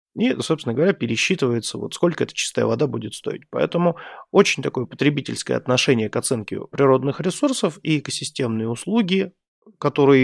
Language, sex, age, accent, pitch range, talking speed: Russian, male, 30-49, native, 120-165 Hz, 140 wpm